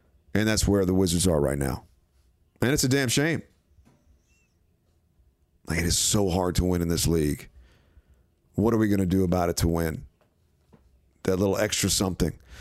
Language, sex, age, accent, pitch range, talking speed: English, male, 50-69, American, 80-105 Hz, 175 wpm